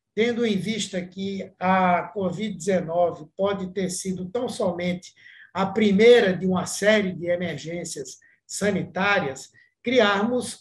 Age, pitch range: 60-79, 175-215 Hz